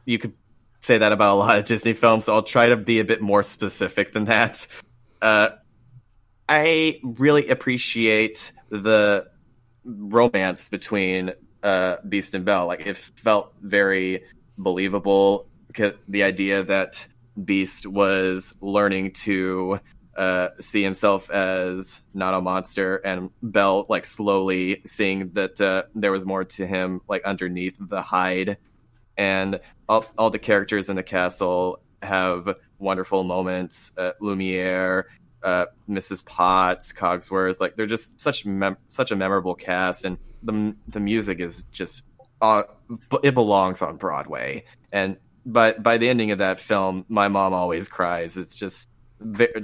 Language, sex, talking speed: English, male, 145 wpm